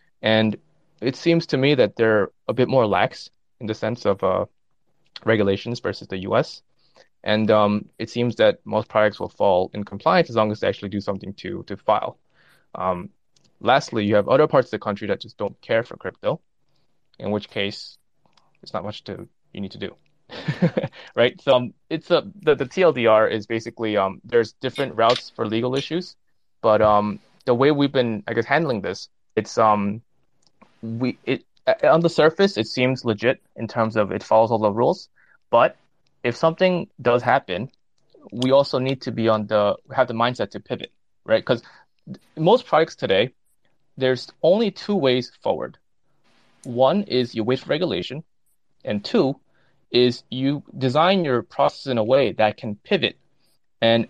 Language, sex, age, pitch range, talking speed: English, male, 20-39, 110-130 Hz, 175 wpm